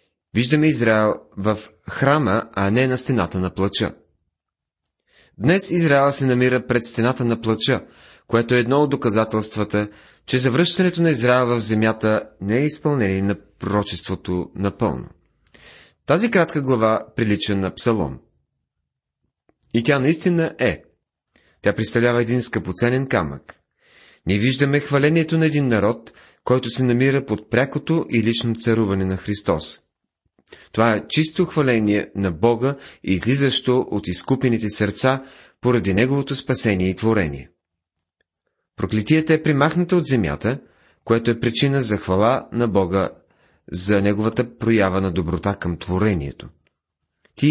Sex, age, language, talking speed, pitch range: male, 30-49, Bulgarian, 130 wpm, 95-130 Hz